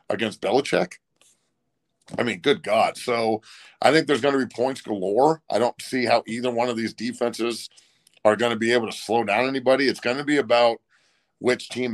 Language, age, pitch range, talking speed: English, 50-69, 110-125 Hz, 200 wpm